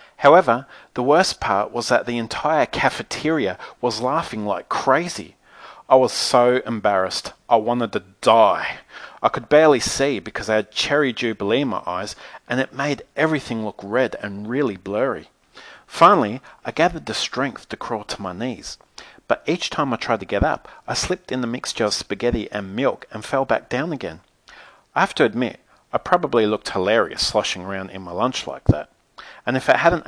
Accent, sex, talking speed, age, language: Australian, male, 185 wpm, 40-59, English